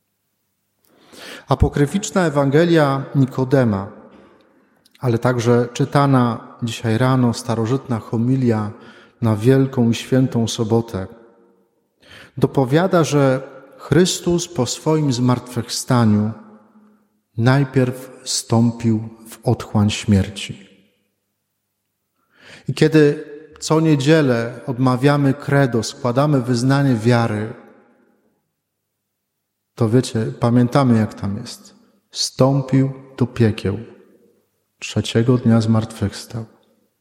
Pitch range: 115-150 Hz